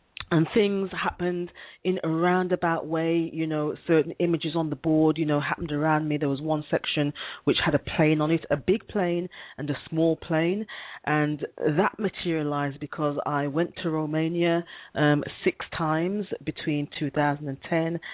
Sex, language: female, English